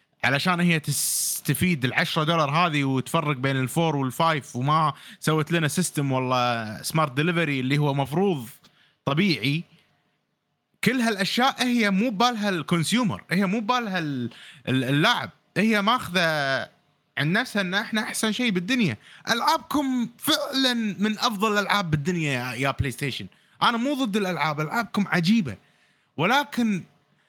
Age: 30-49